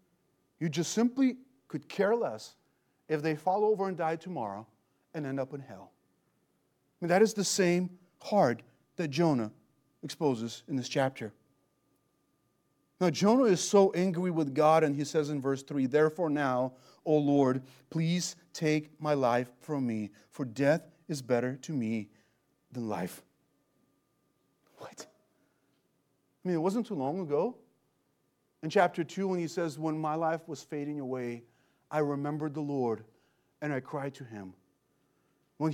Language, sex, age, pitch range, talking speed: English, male, 40-59, 135-185 Hz, 155 wpm